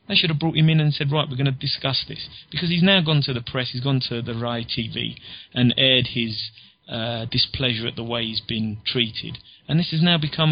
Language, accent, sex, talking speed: English, British, male, 245 wpm